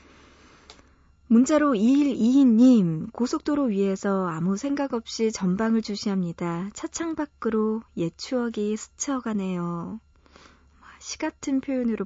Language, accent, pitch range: Korean, native, 175-245 Hz